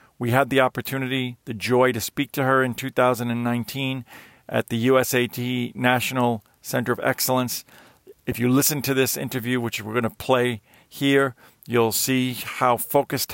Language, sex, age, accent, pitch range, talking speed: English, male, 40-59, American, 110-130 Hz, 155 wpm